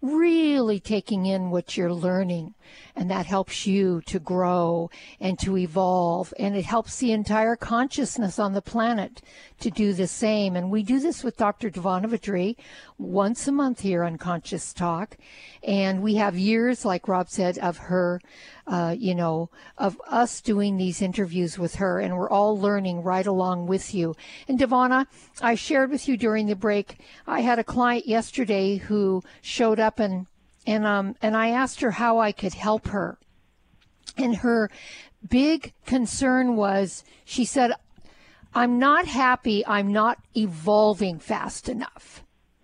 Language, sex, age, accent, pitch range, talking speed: English, female, 60-79, American, 190-245 Hz, 160 wpm